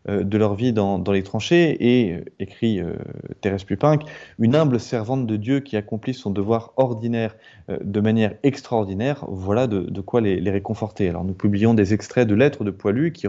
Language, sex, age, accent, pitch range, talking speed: French, male, 20-39, French, 100-130 Hz, 200 wpm